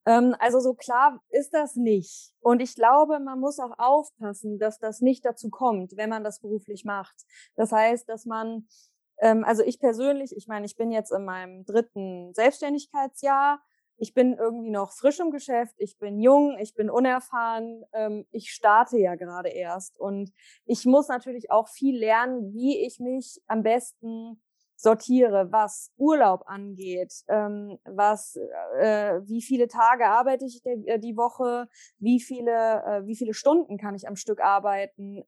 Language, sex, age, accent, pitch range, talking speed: German, female, 20-39, German, 210-255 Hz, 155 wpm